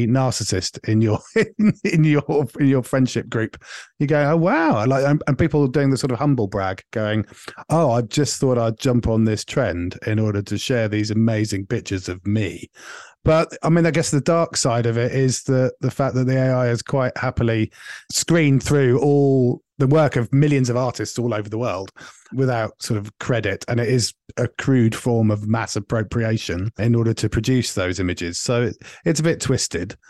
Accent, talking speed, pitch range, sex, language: British, 200 wpm, 110-135 Hz, male, English